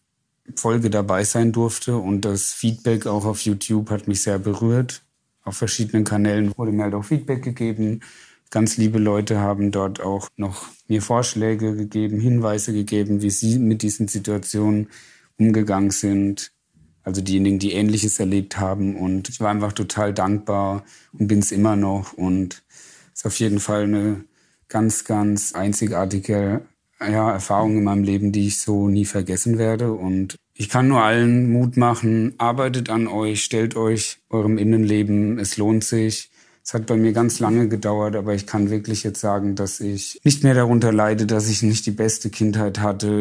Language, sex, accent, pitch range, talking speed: German, male, German, 100-110 Hz, 170 wpm